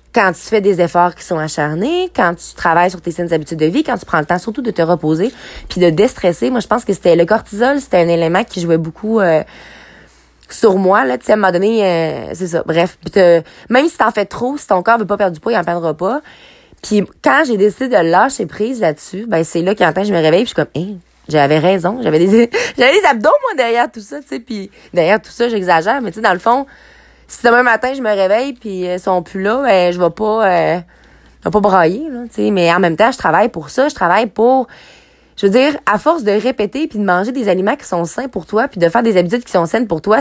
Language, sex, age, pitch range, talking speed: French, female, 20-39, 175-230 Hz, 265 wpm